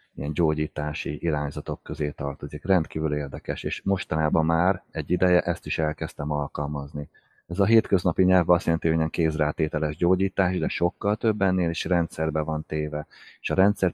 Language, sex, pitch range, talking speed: Hungarian, male, 75-95 Hz, 160 wpm